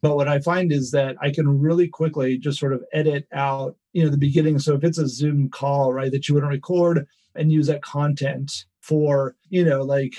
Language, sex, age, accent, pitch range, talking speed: English, male, 40-59, American, 135-160 Hz, 230 wpm